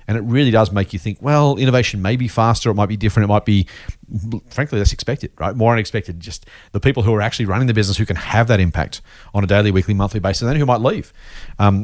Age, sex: 40-59, male